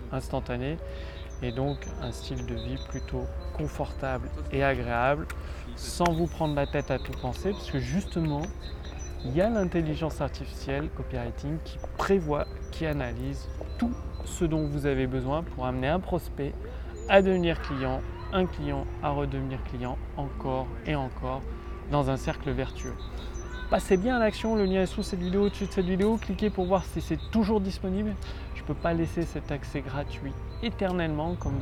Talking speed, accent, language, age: 165 wpm, French, French, 30-49